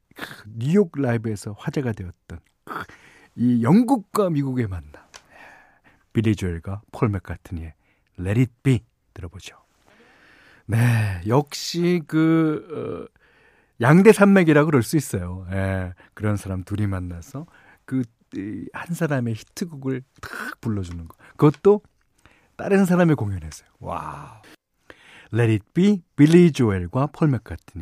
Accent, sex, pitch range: native, male, 95-150 Hz